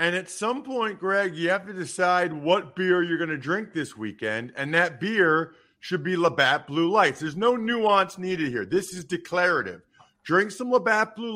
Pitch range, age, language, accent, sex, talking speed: 145-195 Hz, 50-69, English, American, male, 195 wpm